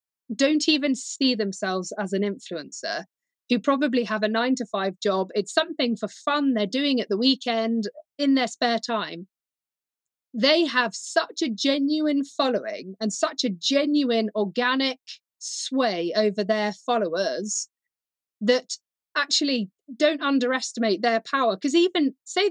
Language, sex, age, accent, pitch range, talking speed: English, female, 40-59, British, 215-280 Hz, 140 wpm